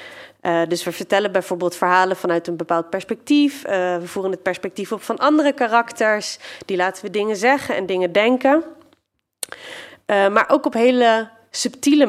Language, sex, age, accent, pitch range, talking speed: Dutch, female, 30-49, Dutch, 185-255 Hz, 165 wpm